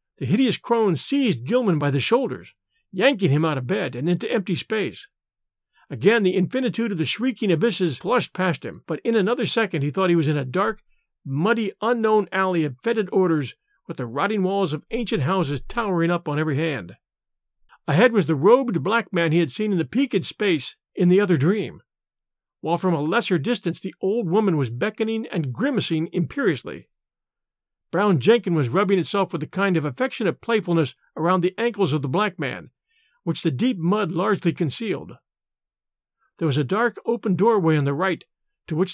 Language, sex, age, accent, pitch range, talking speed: English, male, 50-69, American, 160-215 Hz, 185 wpm